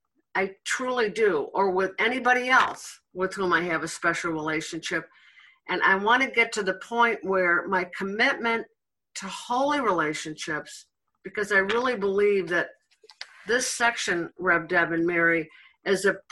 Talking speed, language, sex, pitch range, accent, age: 150 wpm, English, female, 175-235 Hz, American, 50-69